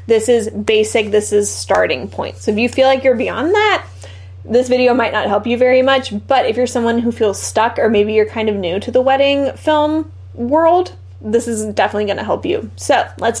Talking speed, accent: 220 wpm, American